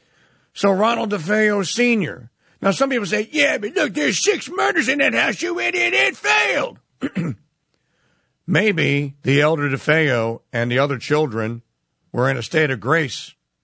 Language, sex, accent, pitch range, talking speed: English, male, American, 130-175 Hz, 155 wpm